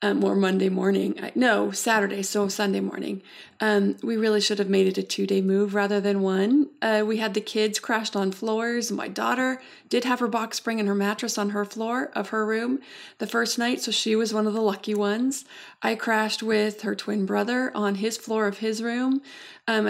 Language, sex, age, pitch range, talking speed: English, female, 30-49, 205-235 Hz, 210 wpm